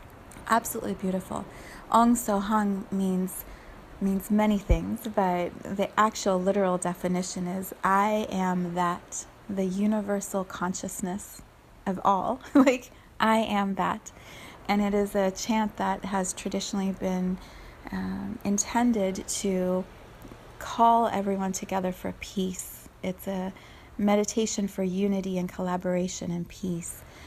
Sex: female